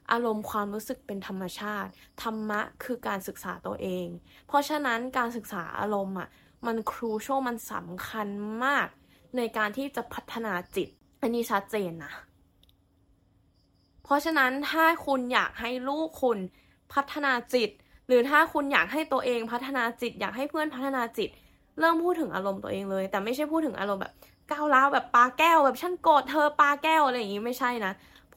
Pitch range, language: 200-255 Hz, Thai